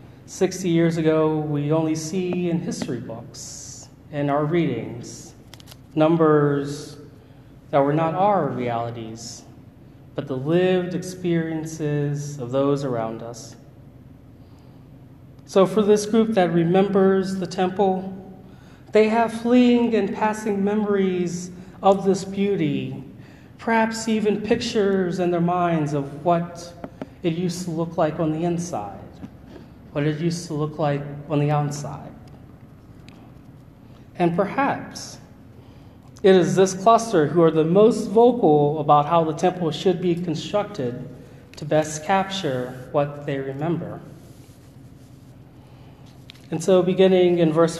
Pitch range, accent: 135-185 Hz, American